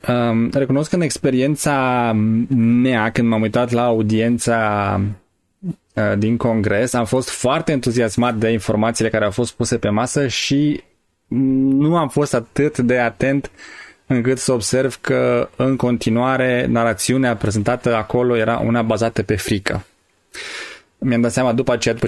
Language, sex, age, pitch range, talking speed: Romanian, male, 20-39, 110-130 Hz, 145 wpm